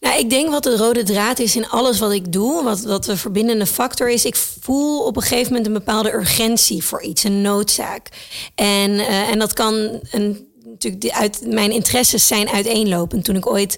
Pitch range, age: 195-230 Hz, 30-49